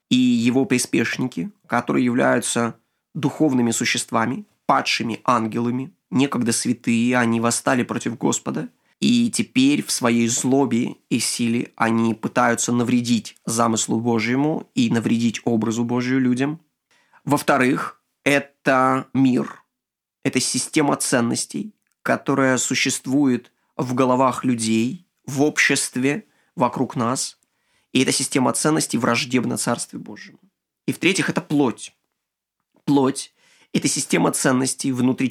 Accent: native